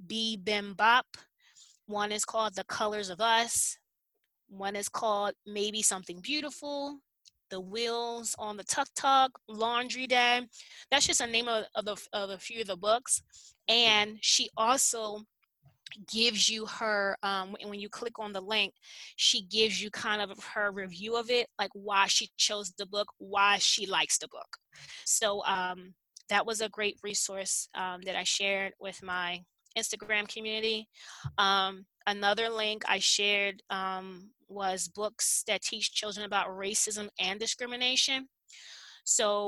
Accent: American